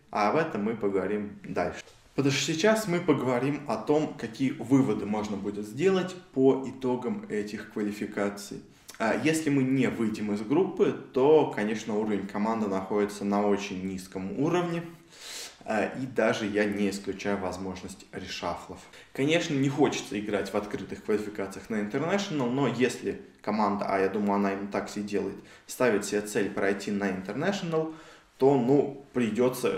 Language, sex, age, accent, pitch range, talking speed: Russian, male, 20-39, native, 100-135 Hz, 145 wpm